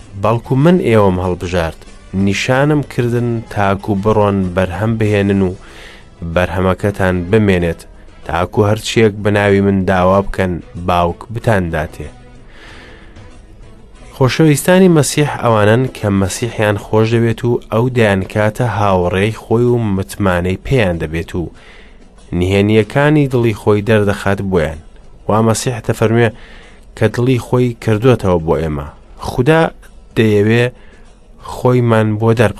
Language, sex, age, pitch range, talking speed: English, male, 30-49, 95-120 Hz, 105 wpm